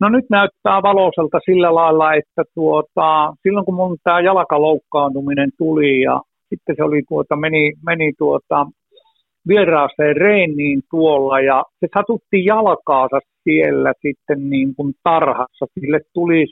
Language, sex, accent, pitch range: Finnish, male, native, 145-185 Hz